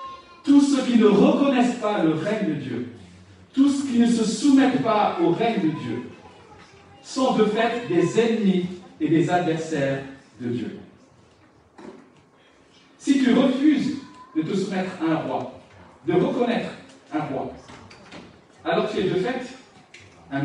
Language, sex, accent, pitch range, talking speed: French, male, French, 155-230 Hz, 145 wpm